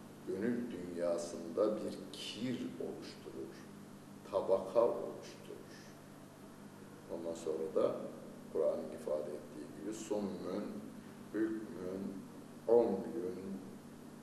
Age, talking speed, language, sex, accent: 60-79, 70 wpm, Turkish, male, native